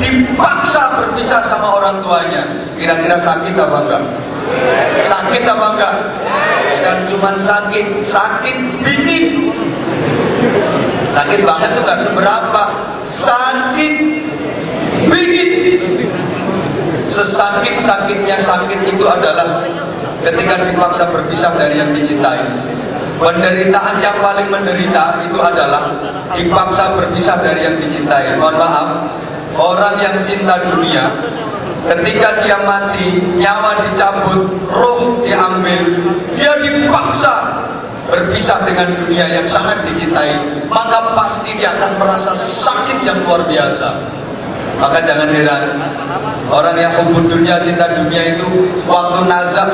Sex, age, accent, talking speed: male, 40-59, Indonesian, 105 wpm